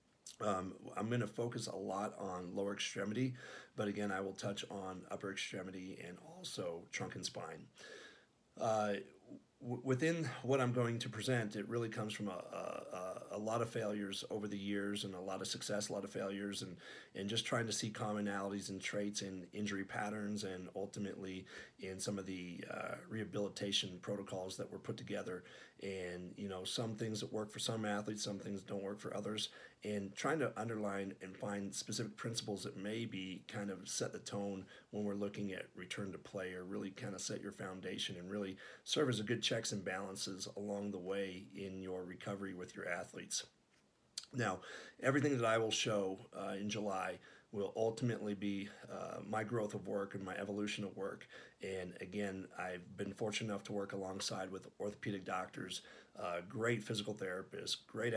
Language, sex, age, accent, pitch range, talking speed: English, male, 40-59, American, 95-105 Hz, 185 wpm